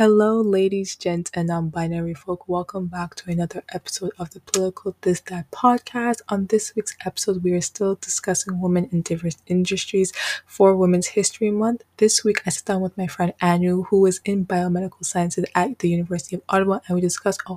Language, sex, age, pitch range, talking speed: English, female, 20-39, 175-195 Hz, 190 wpm